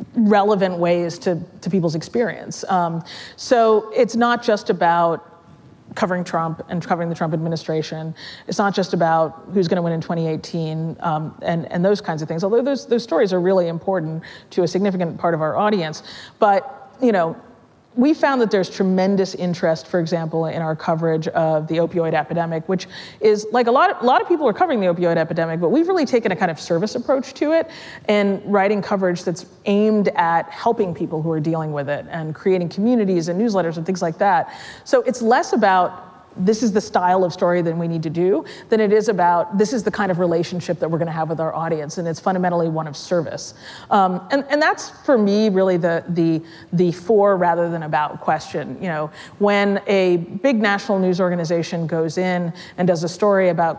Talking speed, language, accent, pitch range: 210 wpm, English, American, 165-205 Hz